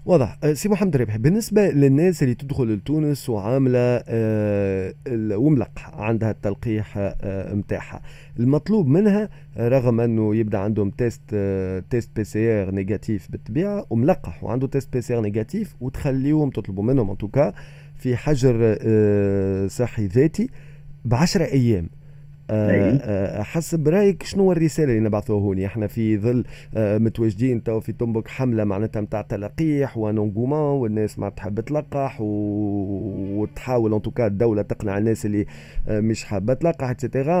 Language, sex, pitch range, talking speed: Arabic, male, 105-145 Hz, 130 wpm